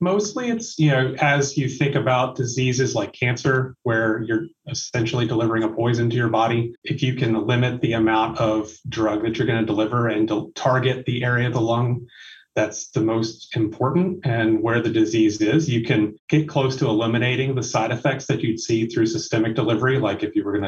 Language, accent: English, American